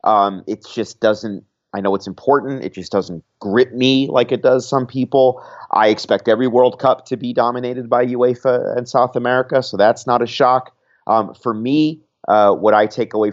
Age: 30-49